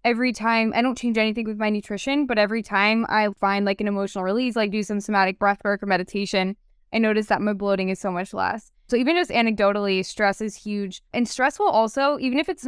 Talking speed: 230 wpm